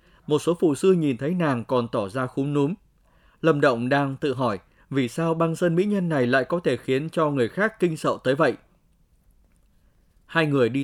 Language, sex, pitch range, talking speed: Vietnamese, male, 125-165 Hz, 210 wpm